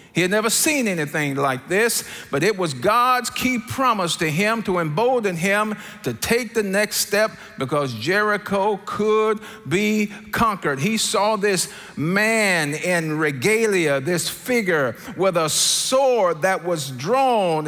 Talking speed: 145 wpm